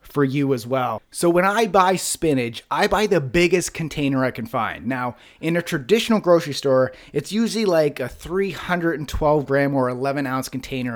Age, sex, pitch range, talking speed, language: 30-49, male, 135-175 Hz, 180 wpm, English